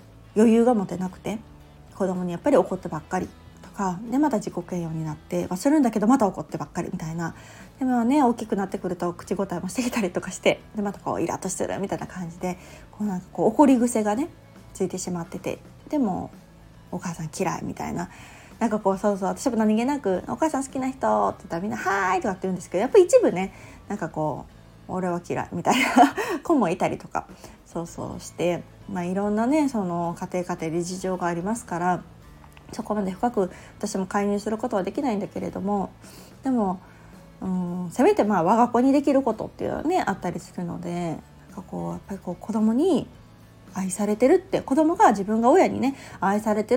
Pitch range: 175-245 Hz